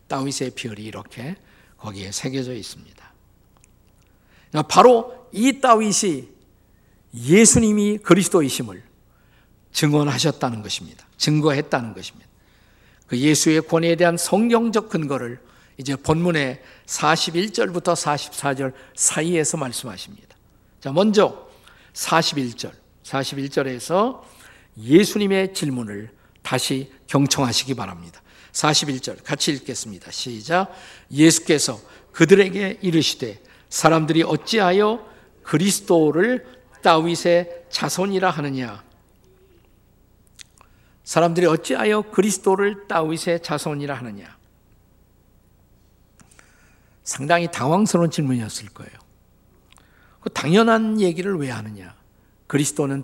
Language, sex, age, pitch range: Korean, male, 50-69, 110-175 Hz